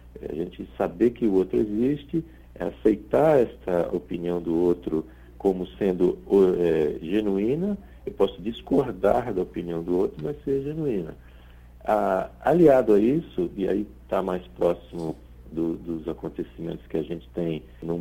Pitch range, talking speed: 80-110 Hz, 145 wpm